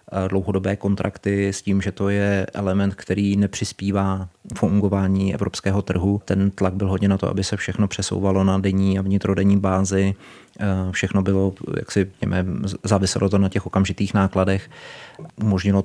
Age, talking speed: 30-49, 150 wpm